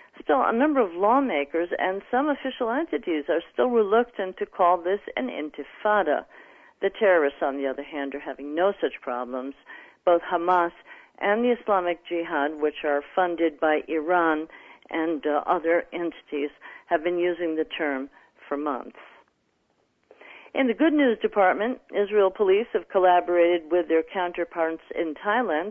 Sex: female